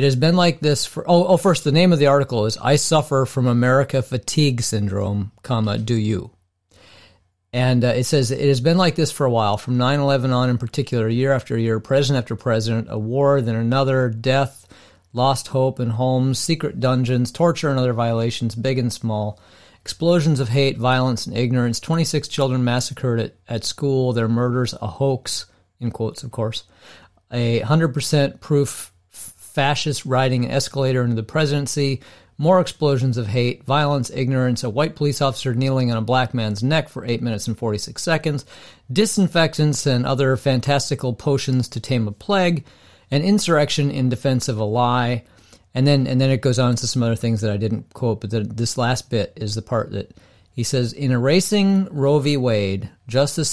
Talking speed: 185 wpm